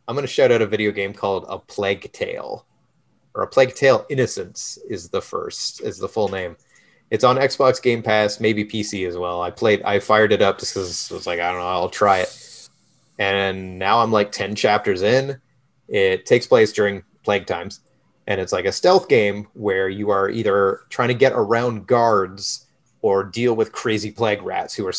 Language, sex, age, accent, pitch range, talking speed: English, male, 30-49, American, 110-175 Hz, 205 wpm